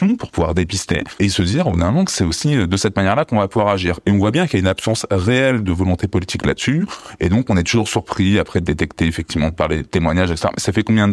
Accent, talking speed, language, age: French, 275 wpm, French, 20-39